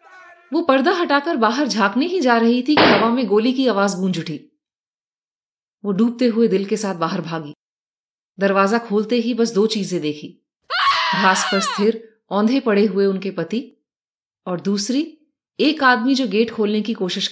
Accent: native